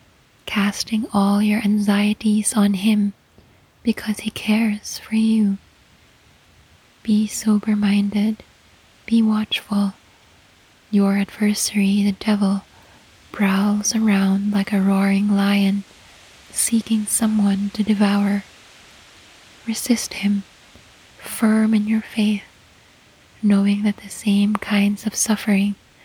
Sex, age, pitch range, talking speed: female, 20-39, 200-215 Hz, 95 wpm